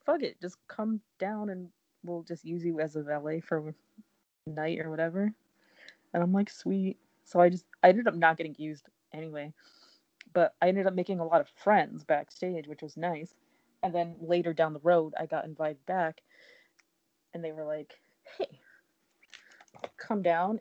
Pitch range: 160-195 Hz